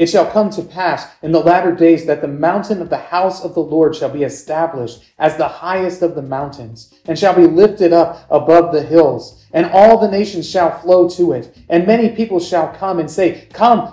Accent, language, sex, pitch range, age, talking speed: American, English, male, 150-185 Hz, 40-59, 220 wpm